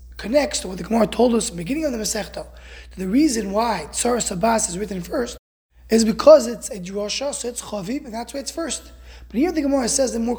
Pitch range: 170-250 Hz